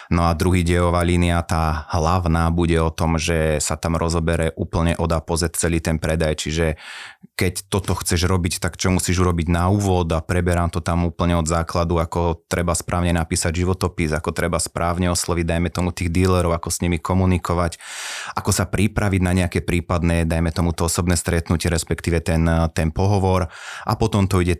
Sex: male